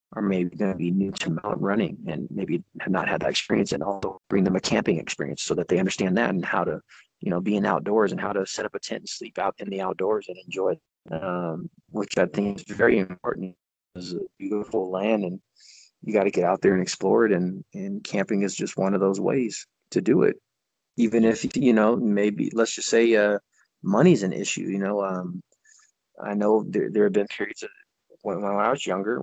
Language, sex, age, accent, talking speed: English, male, 30-49, American, 230 wpm